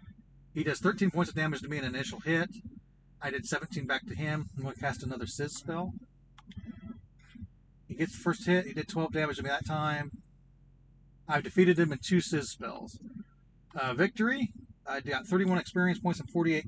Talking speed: 190 wpm